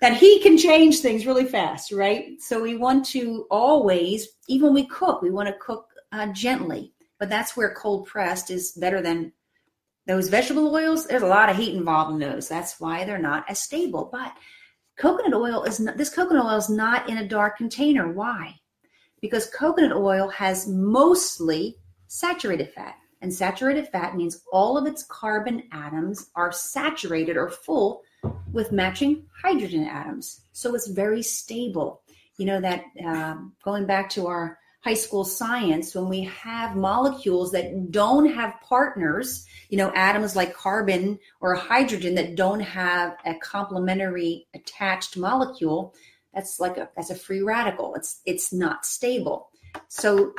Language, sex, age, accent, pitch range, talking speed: English, female, 40-59, American, 180-255 Hz, 160 wpm